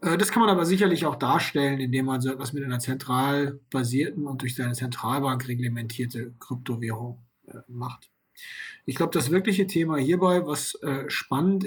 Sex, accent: male, German